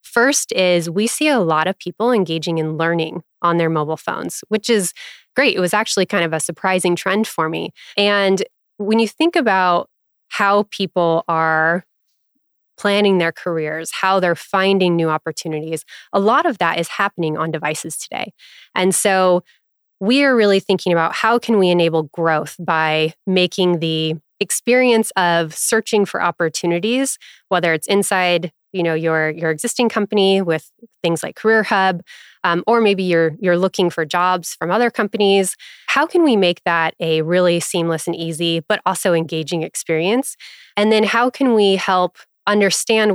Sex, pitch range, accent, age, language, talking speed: female, 165-210 Hz, American, 20-39, English, 165 wpm